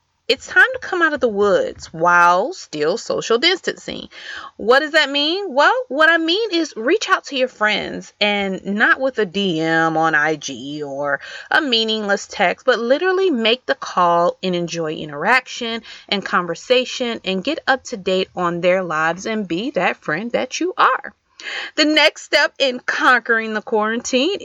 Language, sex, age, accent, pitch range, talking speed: English, female, 30-49, American, 180-285 Hz, 170 wpm